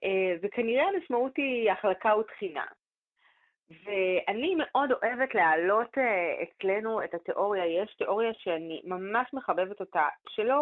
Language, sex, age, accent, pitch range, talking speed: Hebrew, female, 30-49, native, 180-265 Hz, 105 wpm